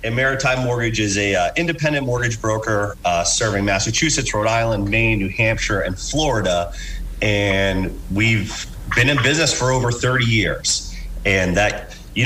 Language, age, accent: English, 30-49, American